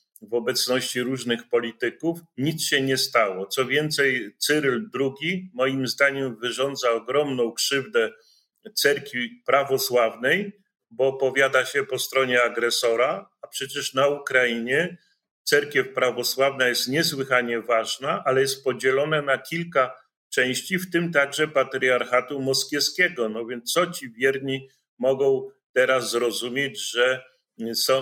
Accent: native